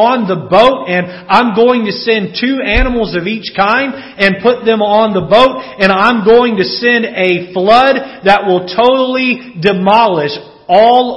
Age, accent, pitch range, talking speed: 40-59, American, 145-235 Hz, 165 wpm